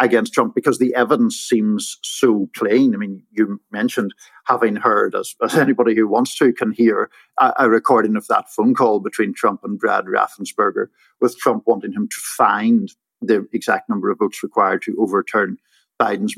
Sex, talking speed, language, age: male, 180 wpm, English, 50-69